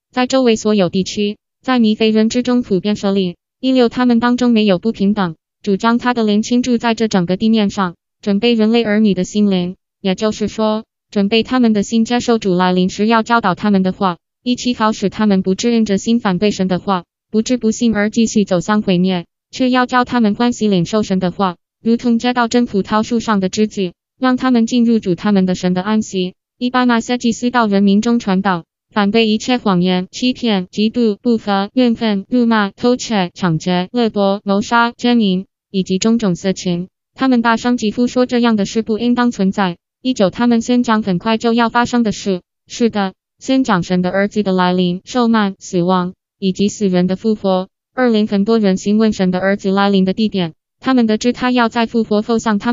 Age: 20-39